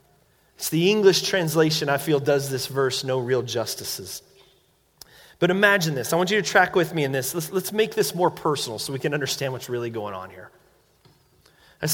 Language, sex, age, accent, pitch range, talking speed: English, male, 30-49, American, 140-215 Hz, 200 wpm